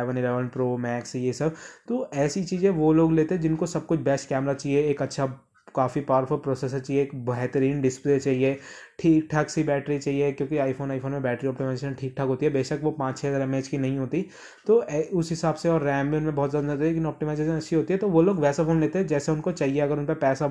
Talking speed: 250 wpm